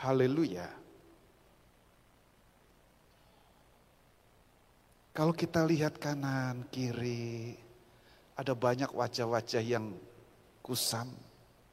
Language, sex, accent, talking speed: Indonesian, male, native, 55 wpm